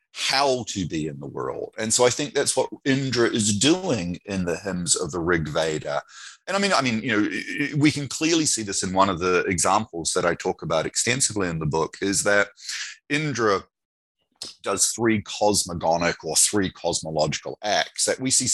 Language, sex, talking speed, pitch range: English, male, 195 wpm, 90-125 Hz